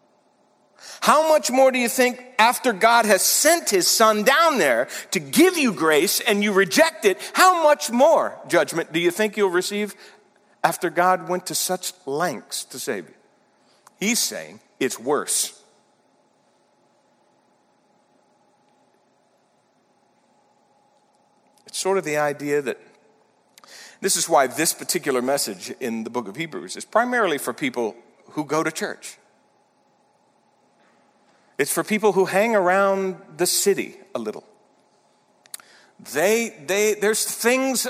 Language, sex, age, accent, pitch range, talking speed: English, male, 50-69, American, 190-255 Hz, 130 wpm